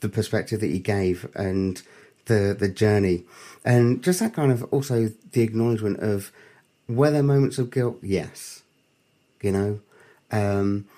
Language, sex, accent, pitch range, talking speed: English, male, British, 100-130 Hz, 150 wpm